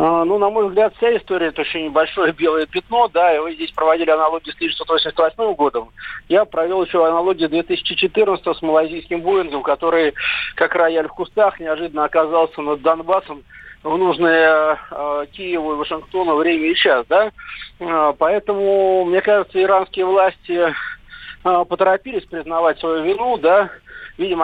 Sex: male